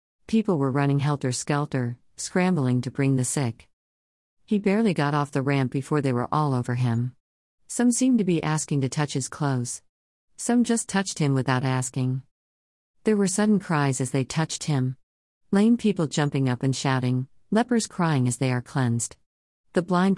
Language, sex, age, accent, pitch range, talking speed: English, female, 50-69, American, 125-170 Hz, 175 wpm